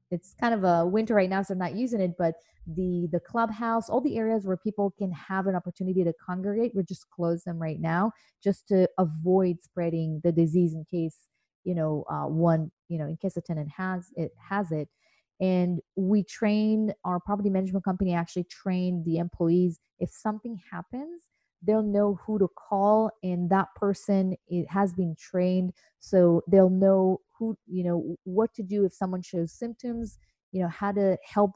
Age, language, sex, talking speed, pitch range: 30-49, English, female, 190 wpm, 170-205 Hz